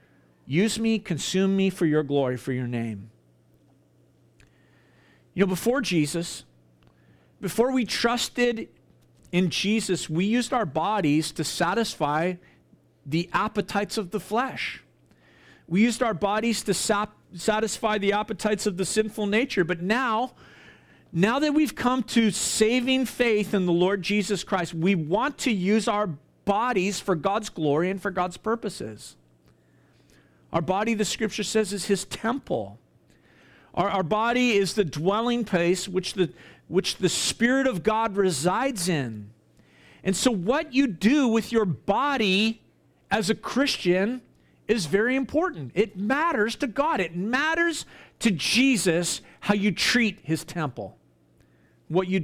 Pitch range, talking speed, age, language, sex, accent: 170-225 Hz, 140 wpm, 40-59, English, male, American